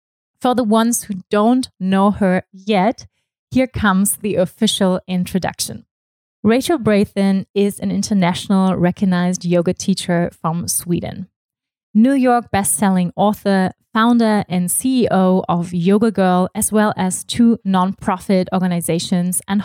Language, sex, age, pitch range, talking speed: German, female, 20-39, 180-215 Hz, 120 wpm